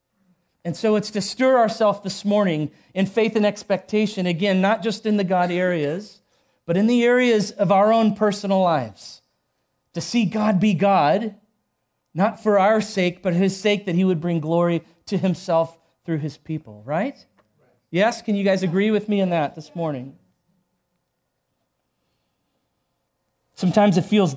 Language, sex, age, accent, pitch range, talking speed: English, male, 40-59, American, 160-205 Hz, 160 wpm